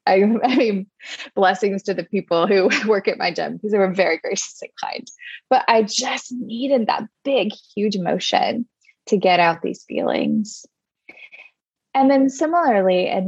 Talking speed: 160 wpm